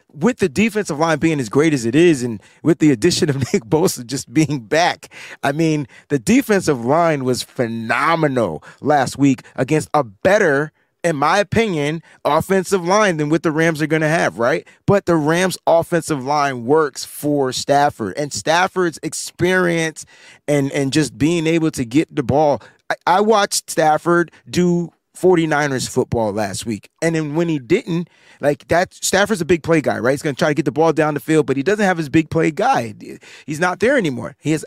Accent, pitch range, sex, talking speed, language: American, 145-180 Hz, male, 195 wpm, English